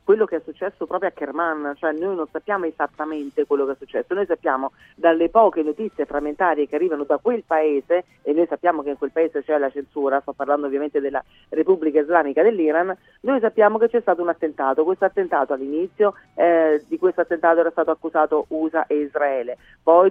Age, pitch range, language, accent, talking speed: 40-59, 150-185 Hz, Italian, native, 195 wpm